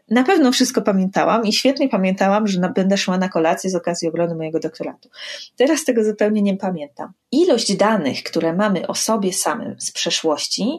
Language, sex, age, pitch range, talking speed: Polish, female, 30-49, 170-245 Hz, 175 wpm